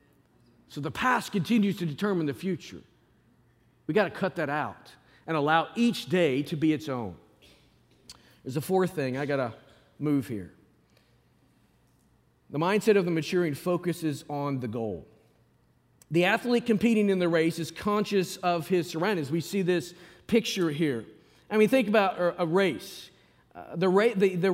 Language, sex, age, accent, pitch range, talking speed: English, male, 40-59, American, 150-220 Hz, 155 wpm